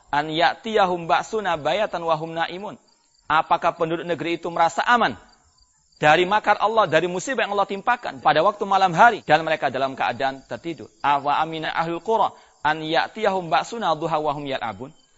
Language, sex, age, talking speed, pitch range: Indonesian, male, 40-59, 170 wpm, 130-175 Hz